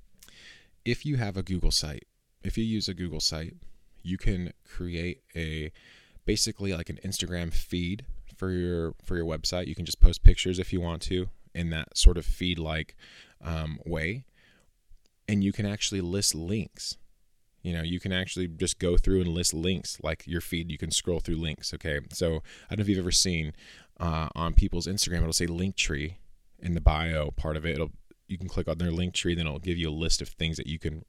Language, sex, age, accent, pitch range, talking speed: English, male, 20-39, American, 80-95 Hz, 210 wpm